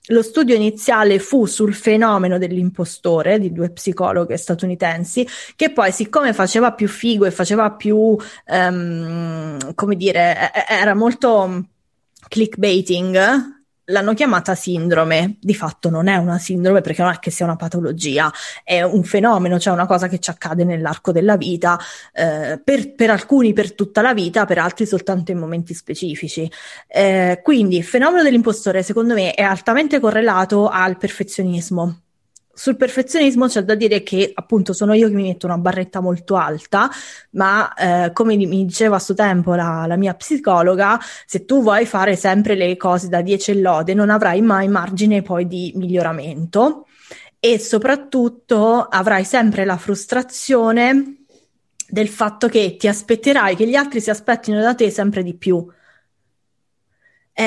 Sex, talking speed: female, 155 wpm